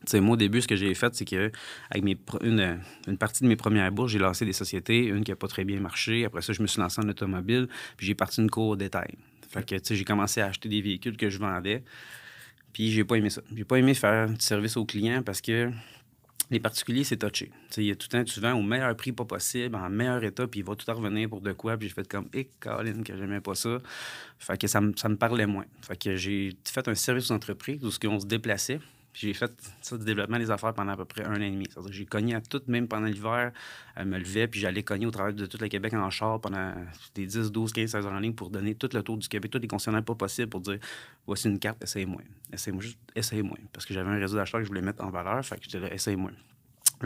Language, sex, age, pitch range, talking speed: French, male, 30-49, 100-115 Hz, 285 wpm